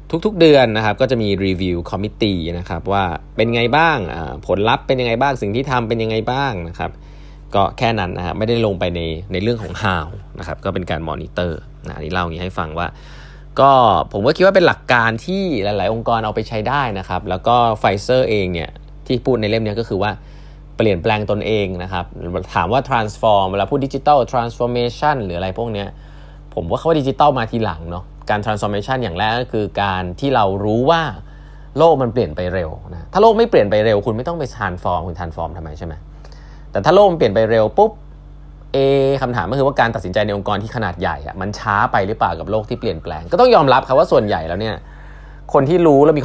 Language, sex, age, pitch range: Thai, male, 20-39, 90-125 Hz